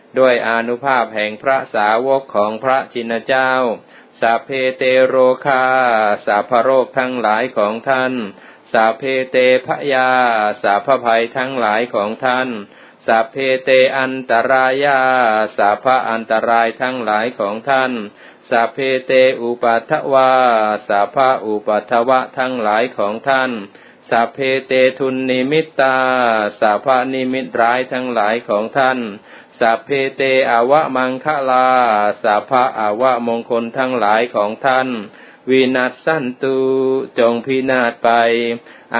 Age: 20-39